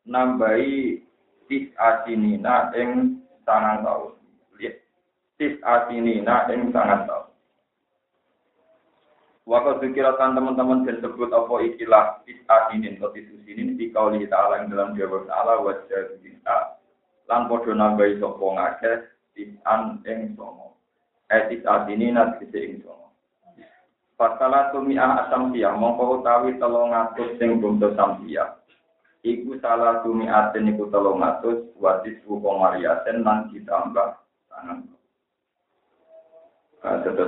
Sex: male